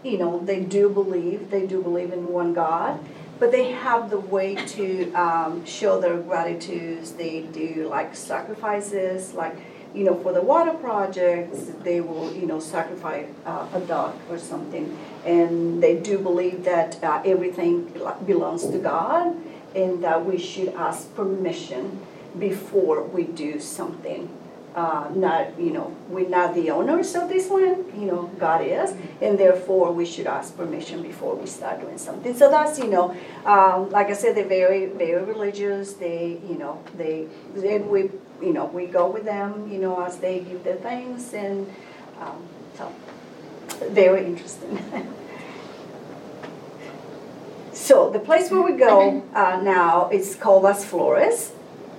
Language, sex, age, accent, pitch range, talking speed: English, female, 50-69, American, 175-210 Hz, 155 wpm